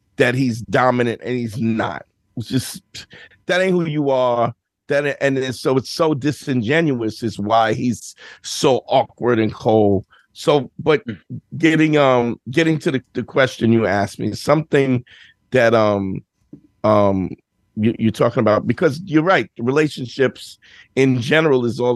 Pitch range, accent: 110-135 Hz, American